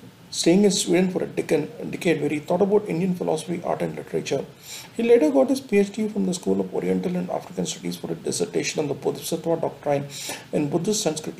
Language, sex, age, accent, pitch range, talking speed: English, male, 40-59, Indian, 140-190 Hz, 200 wpm